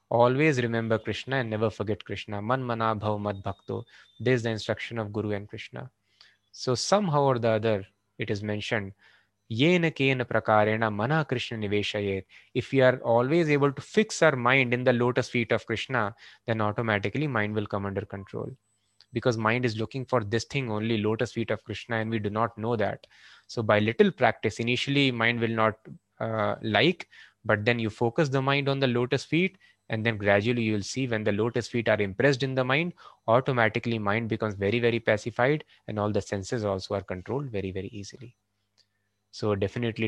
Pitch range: 105-130 Hz